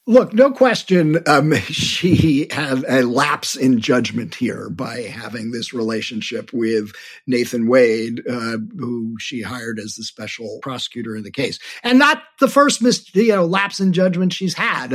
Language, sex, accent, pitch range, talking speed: English, male, American, 125-175 Hz, 165 wpm